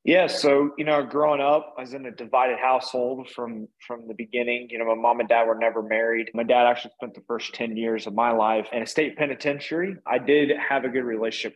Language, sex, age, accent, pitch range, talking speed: English, male, 20-39, American, 115-140 Hz, 240 wpm